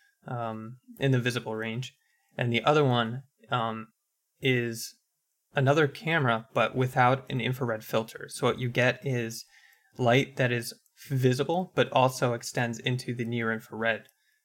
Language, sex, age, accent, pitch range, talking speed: English, male, 20-39, American, 120-145 Hz, 135 wpm